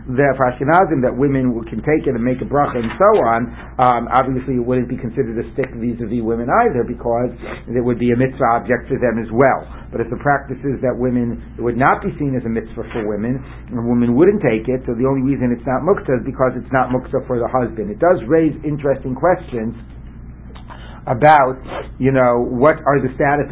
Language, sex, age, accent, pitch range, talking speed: English, male, 60-79, American, 115-140 Hz, 210 wpm